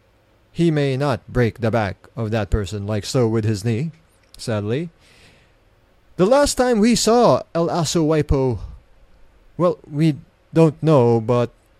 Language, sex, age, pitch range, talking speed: English, male, 20-39, 110-165 Hz, 140 wpm